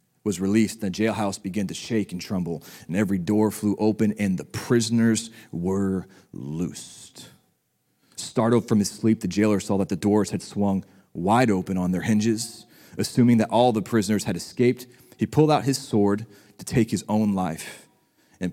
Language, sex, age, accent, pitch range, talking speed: English, male, 30-49, American, 100-120 Hz, 175 wpm